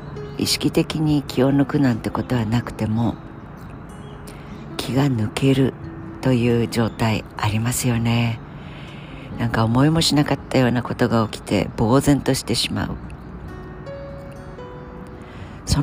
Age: 50-69